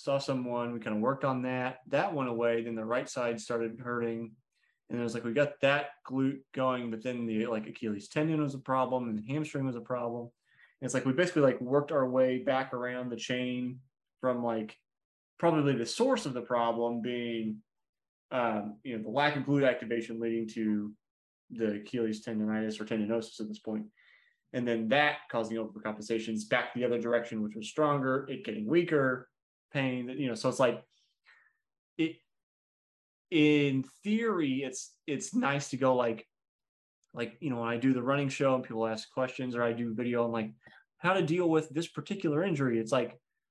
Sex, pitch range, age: male, 115-140 Hz, 20-39